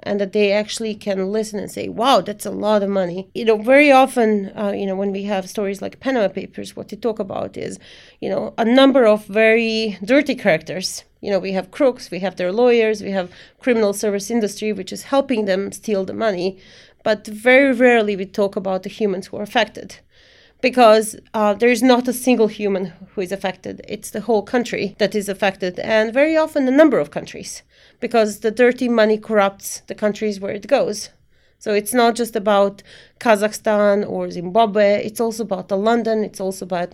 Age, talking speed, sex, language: 30-49, 200 wpm, female, English